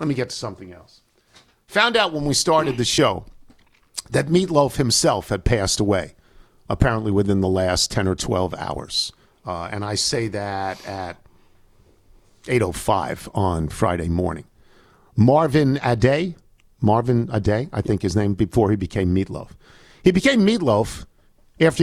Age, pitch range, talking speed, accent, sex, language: 50-69, 100-140 Hz, 145 wpm, American, male, English